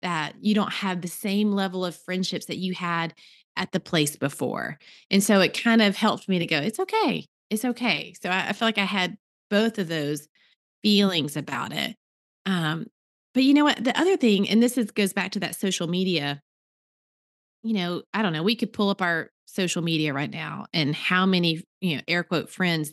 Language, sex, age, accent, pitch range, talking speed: English, female, 30-49, American, 170-220 Hz, 210 wpm